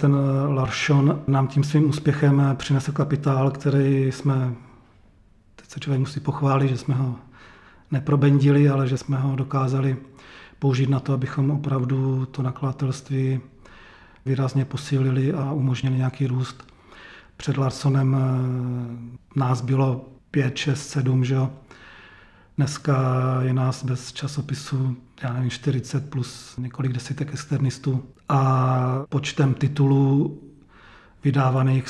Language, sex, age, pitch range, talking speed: Czech, male, 40-59, 130-140 Hz, 115 wpm